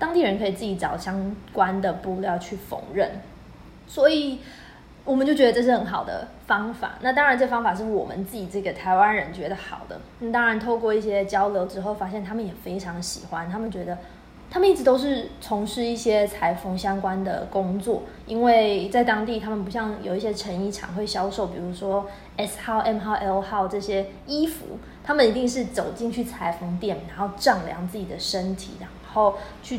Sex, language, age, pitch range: female, Chinese, 20-39, 190-230 Hz